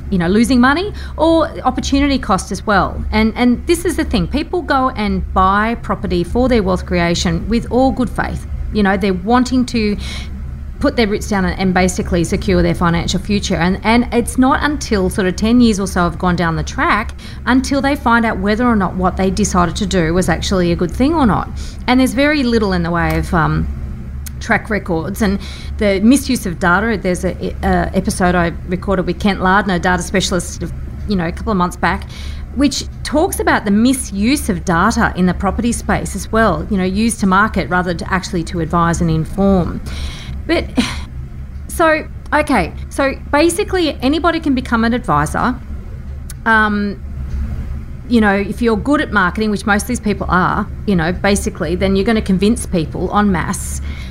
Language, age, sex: English, 40-59, female